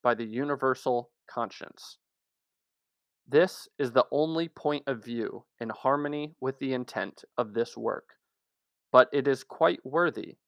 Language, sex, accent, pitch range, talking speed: English, male, American, 120-140 Hz, 135 wpm